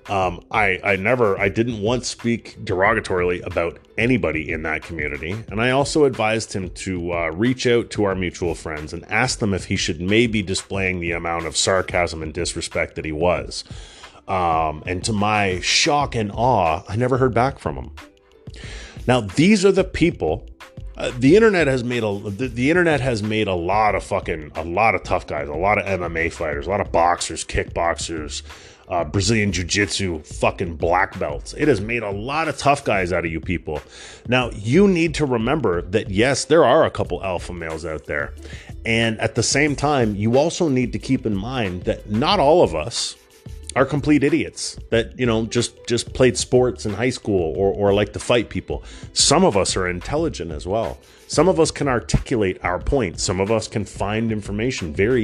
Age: 30-49